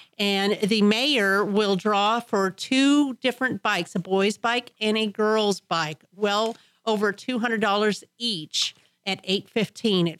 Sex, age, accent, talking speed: female, 40-59, American, 135 wpm